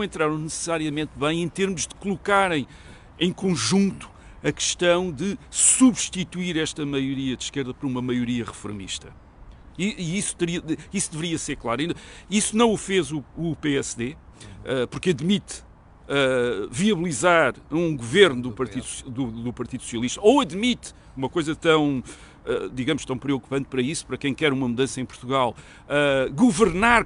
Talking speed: 140 wpm